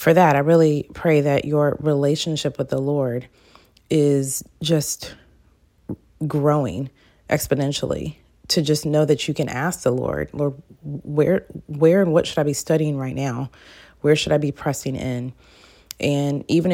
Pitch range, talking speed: 135-160 Hz, 155 wpm